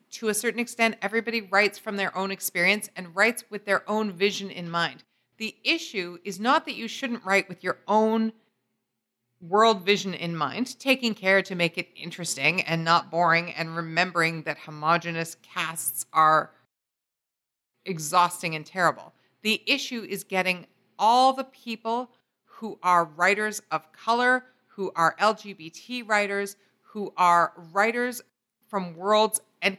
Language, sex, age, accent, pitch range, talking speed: English, female, 40-59, American, 180-230 Hz, 145 wpm